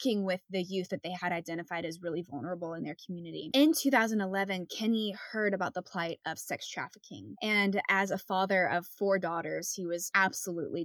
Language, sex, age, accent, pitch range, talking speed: English, female, 10-29, American, 175-205 Hz, 185 wpm